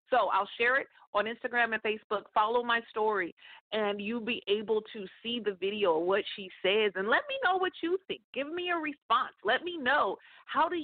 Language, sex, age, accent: English, female, 40-59, American